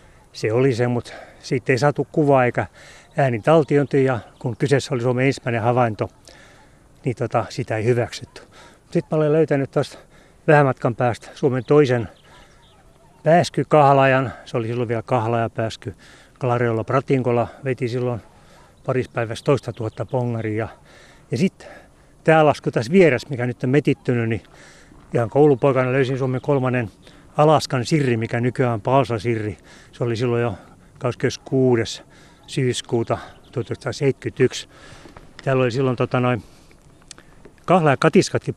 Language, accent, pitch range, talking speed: Finnish, native, 120-145 Hz, 130 wpm